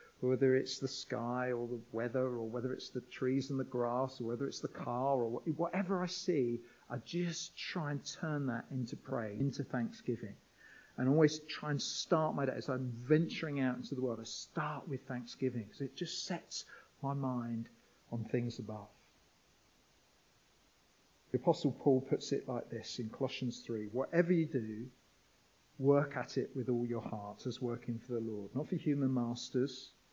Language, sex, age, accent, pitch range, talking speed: English, male, 50-69, British, 120-145 Hz, 180 wpm